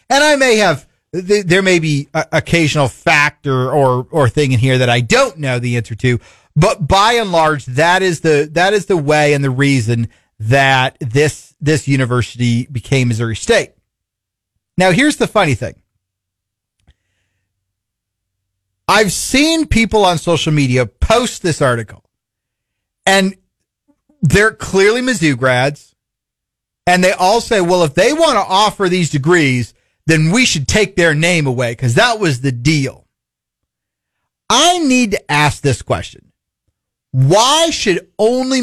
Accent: American